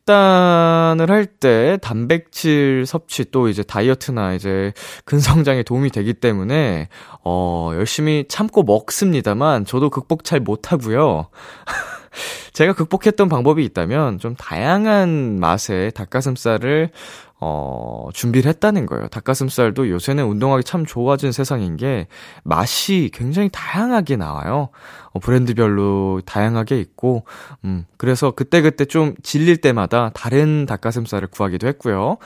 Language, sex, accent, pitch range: Korean, male, native, 105-165 Hz